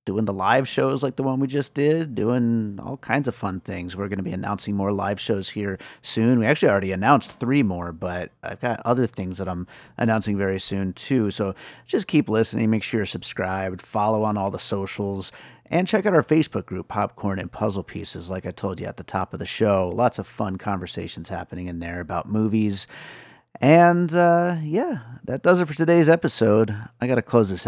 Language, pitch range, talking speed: English, 95-120 Hz, 215 wpm